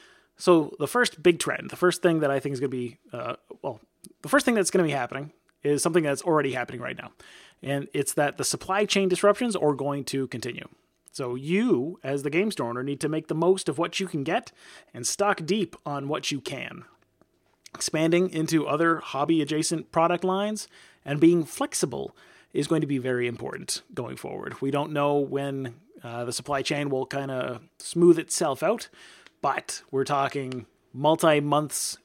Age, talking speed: 30-49, 195 wpm